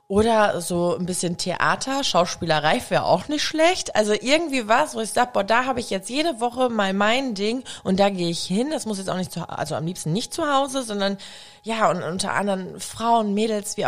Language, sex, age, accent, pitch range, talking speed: German, female, 20-39, German, 160-215 Hz, 220 wpm